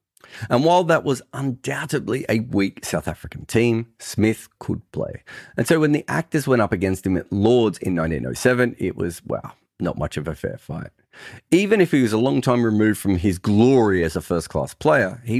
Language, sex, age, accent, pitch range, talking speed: English, male, 40-59, Australian, 95-140 Hz, 200 wpm